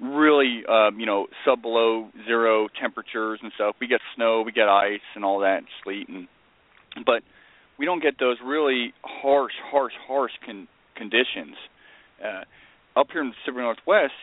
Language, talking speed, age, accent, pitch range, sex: English, 165 wpm, 40-59, American, 100-125 Hz, male